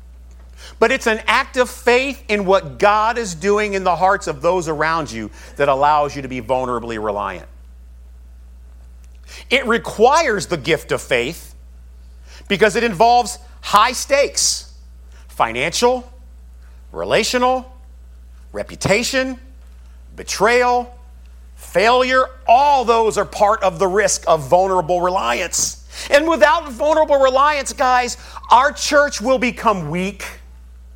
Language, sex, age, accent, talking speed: English, male, 50-69, American, 120 wpm